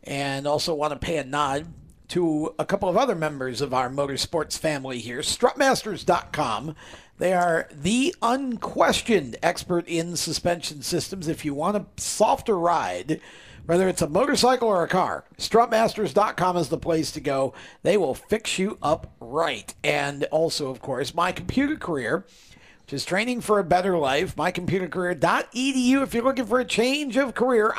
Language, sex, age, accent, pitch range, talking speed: English, male, 50-69, American, 150-210 Hz, 160 wpm